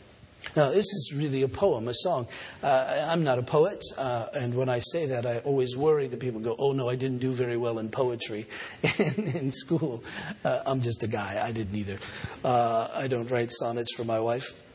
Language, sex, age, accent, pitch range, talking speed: English, male, 50-69, American, 115-150 Hz, 210 wpm